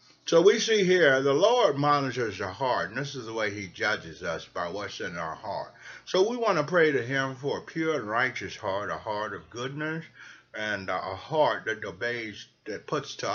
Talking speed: 205 wpm